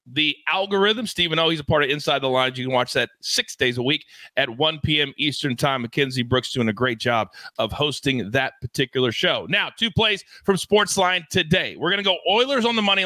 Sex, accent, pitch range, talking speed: male, American, 140-195 Hz, 225 wpm